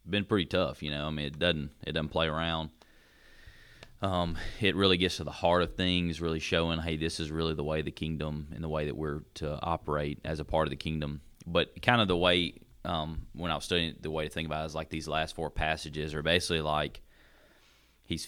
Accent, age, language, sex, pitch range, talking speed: American, 30-49, English, male, 75-90 Hz, 235 wpm